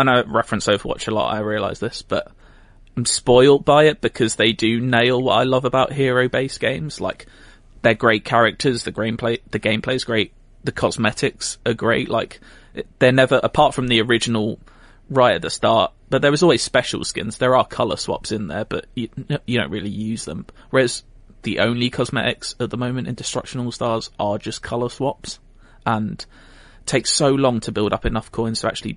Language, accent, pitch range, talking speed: English, British, 110-125 Hz, 190 wpm